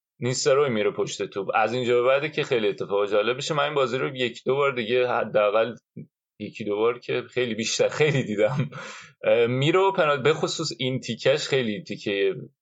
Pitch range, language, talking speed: 120-175 Hz, Persian, 160 wpm